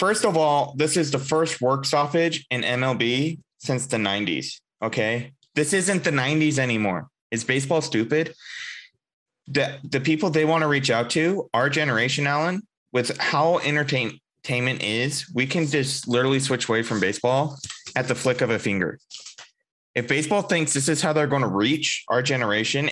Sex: male